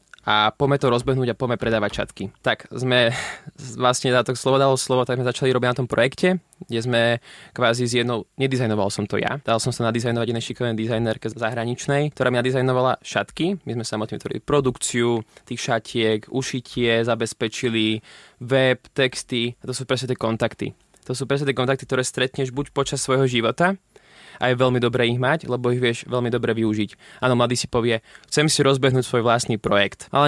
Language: Slovak